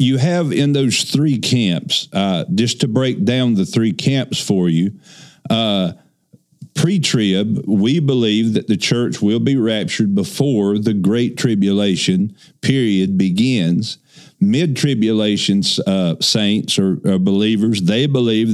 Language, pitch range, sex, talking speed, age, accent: English, 100-145 Hz, male, 130 wpm, 50-69, American